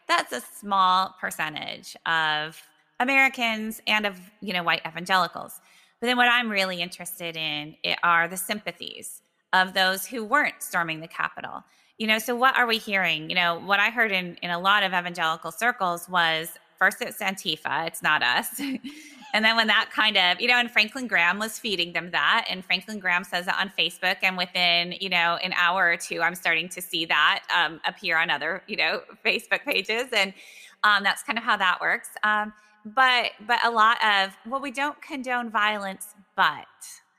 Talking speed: 190 wpm